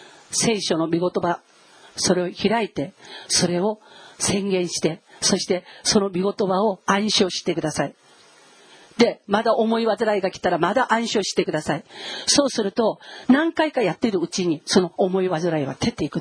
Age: 40-59